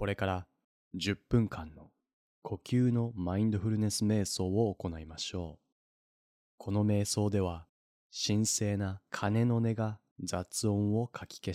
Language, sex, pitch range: Japanese, male, 90-120 Hz